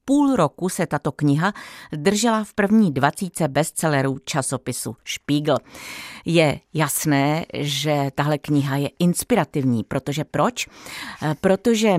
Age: 50-69